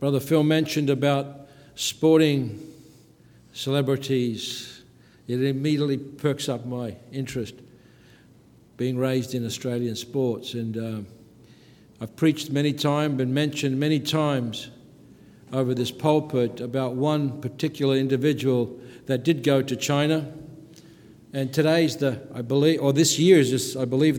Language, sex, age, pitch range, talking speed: English, male, 60-79, 125-145 Hz, 125 wpm